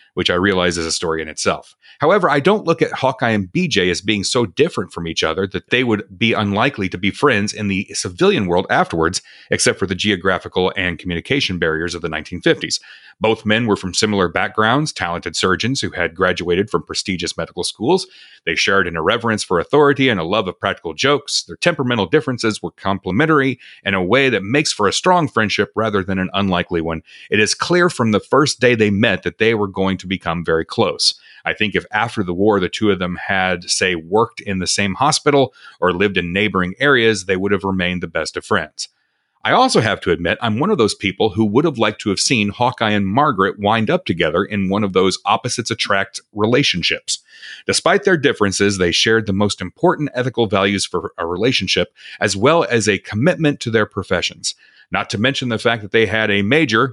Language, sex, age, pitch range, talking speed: English, male, 30-49, 95-120 Hz, 210 wpm